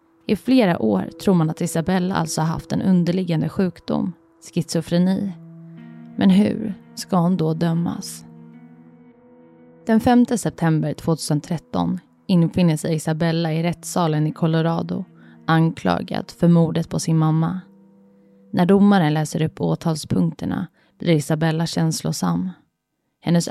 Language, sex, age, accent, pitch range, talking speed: Swedish, female, 30-49, native, 155-175 Hz, 115 wpm